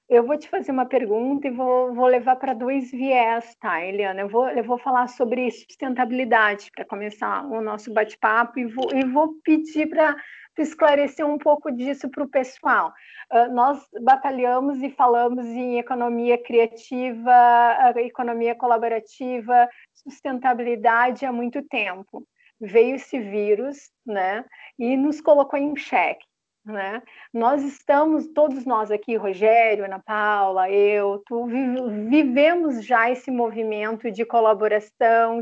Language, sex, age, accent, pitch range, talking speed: Portuguese, female, 40-59, Brazilian, 230-270 Hz, 130 wpm